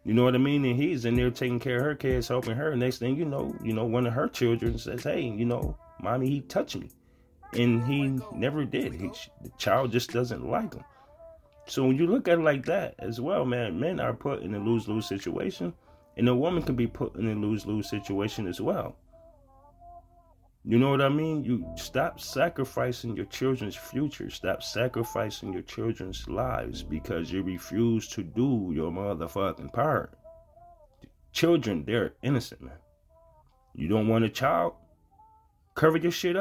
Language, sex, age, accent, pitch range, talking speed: English, male, 30-49, American, 105-135 Hz, 180 wpm